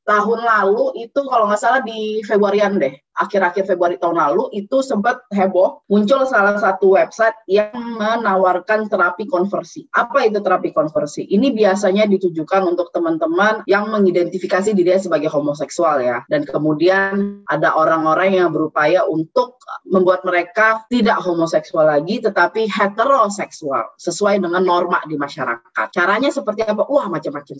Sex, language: female, Indonesian